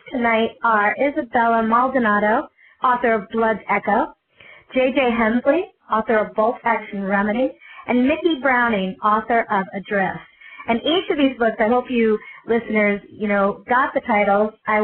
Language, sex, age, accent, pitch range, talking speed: English, female, 40-59, American, 200-250 Hz, 145 wpm